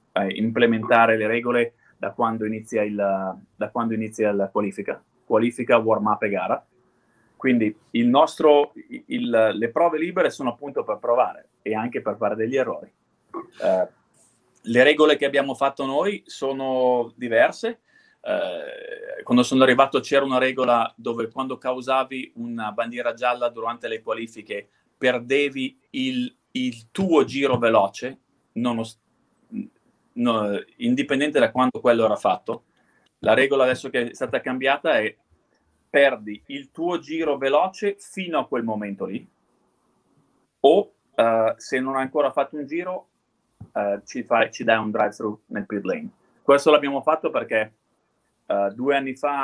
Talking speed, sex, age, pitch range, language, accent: 145 wpm, male, 30-49, 115-160 Hz, Italian, native